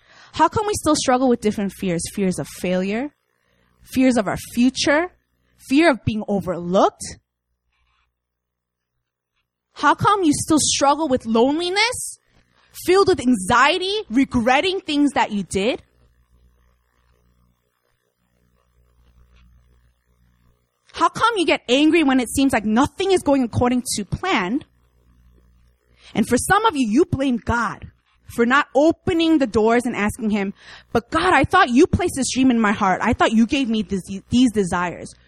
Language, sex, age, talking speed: English, female, 20-39, 140 wpm